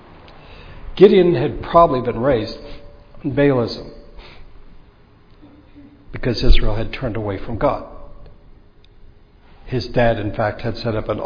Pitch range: 110-140 Hz